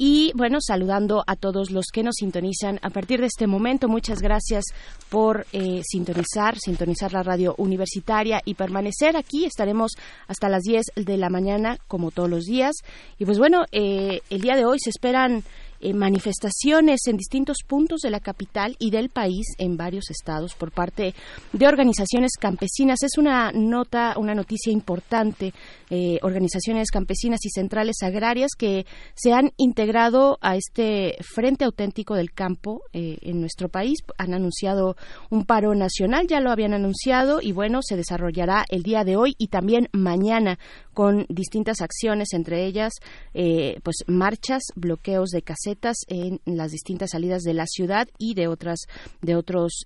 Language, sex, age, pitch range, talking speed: Spanish, female, 30-49, 185-240 Hz, 160 wpm